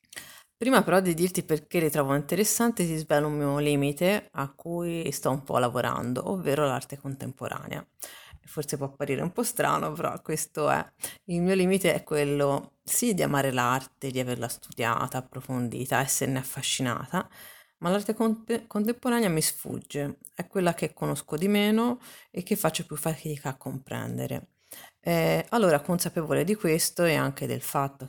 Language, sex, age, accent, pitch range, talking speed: Italian, female, 30-49, native, 140-180 Hz, 160 wpm